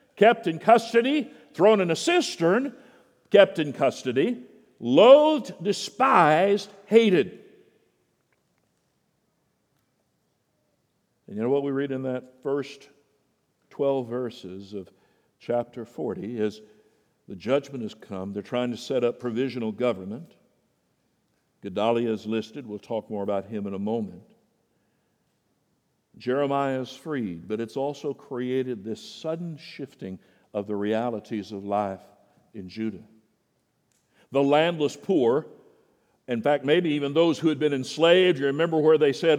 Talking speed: 130 wpm